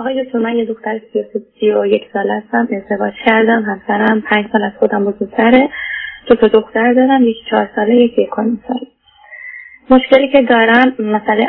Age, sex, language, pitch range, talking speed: 20-39, female, Persian, 205-245 Hz, 180 wpm